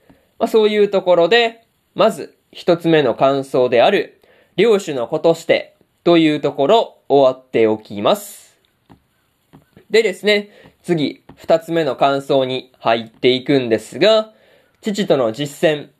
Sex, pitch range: male, 140-200 Hz